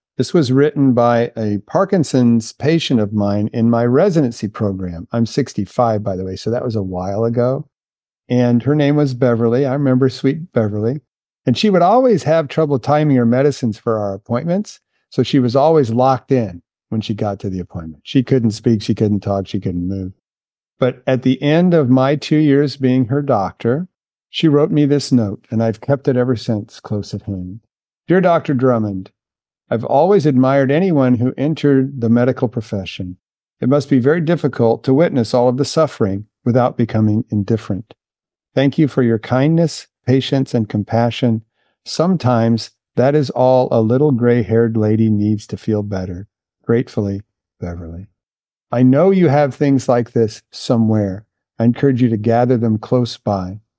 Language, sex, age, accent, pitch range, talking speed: English, male, 50-69, American, 110-140 Hz, 175 wpm